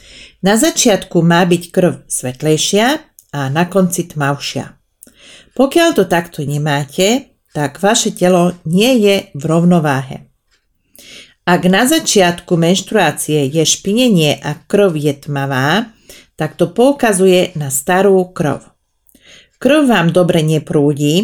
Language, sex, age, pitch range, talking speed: Slovak, female, 40-59, 150-210 Hz, 115 wpm